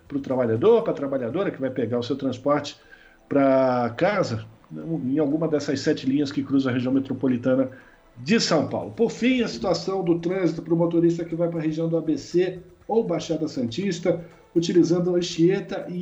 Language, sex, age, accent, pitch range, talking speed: Portuguese, male, 50-69, Brazilian, 135-180 Hz, 185 wpm